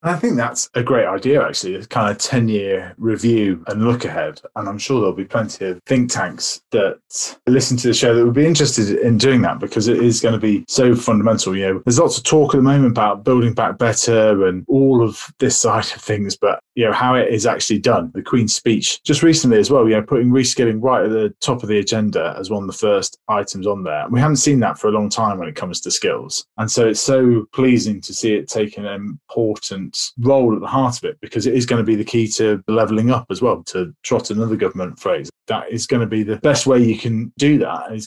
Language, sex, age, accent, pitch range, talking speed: English, male, 20-39, British, 105-130 Hz, 250 wpm